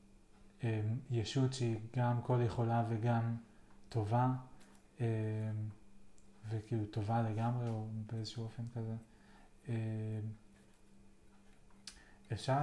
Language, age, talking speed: Hebrew, 30-49, 85 wpm